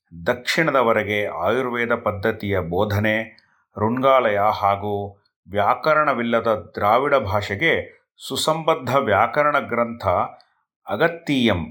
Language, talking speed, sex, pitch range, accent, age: Kannada, 65 wpm, male, 110-140 Hz, native, 30-49